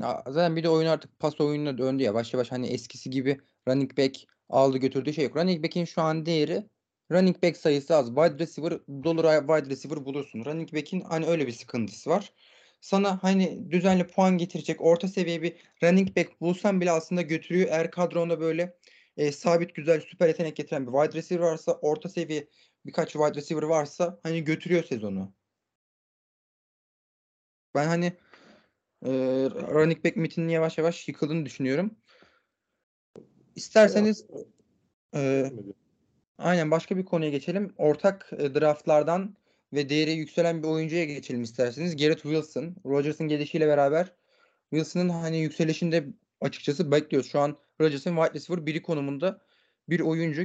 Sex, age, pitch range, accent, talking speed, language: male, 30-49, 145-170 Hz, native, 145 wpm, Turkish